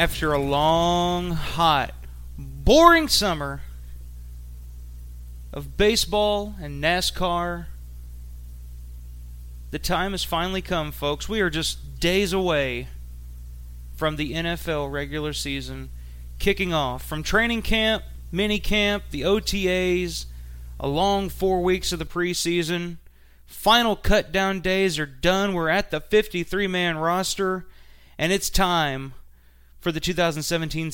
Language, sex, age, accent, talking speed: English, male, 30-49, American, 115 wpm